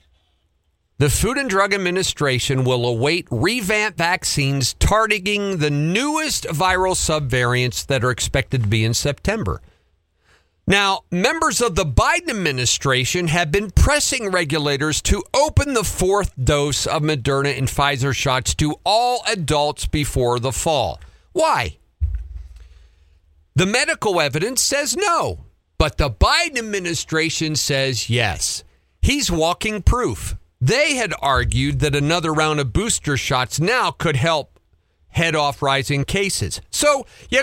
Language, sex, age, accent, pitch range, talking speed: English, male, 50-69, American, 120-200 Hz, 130 wpm